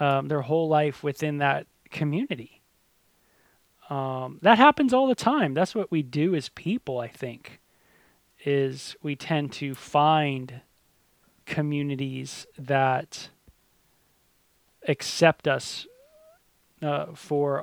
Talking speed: 110 wpm